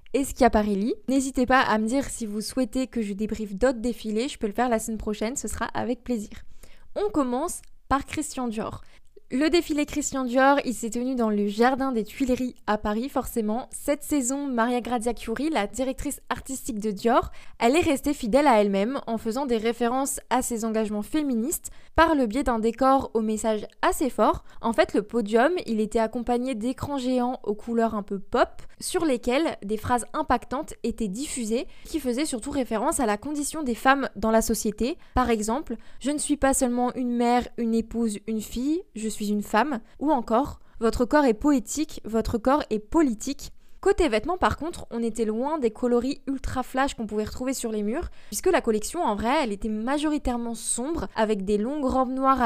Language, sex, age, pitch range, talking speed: French, female, 20-39, 225-275 Hz, 195 wpm